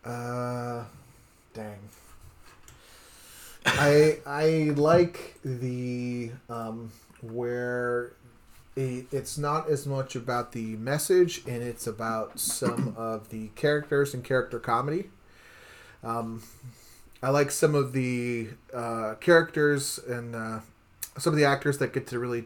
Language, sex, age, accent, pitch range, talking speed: English, male, 30-49, American, 115-130 Hz, 115 wpm